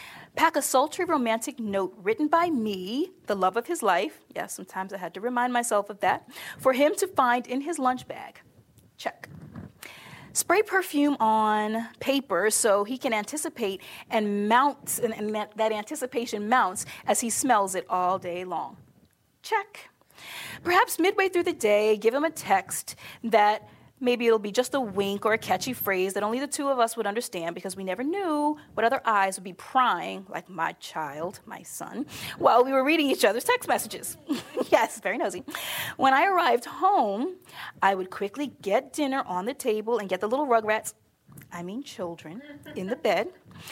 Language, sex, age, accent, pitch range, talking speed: English, female, 30-49, American, 200-285 Hz, 180 wpm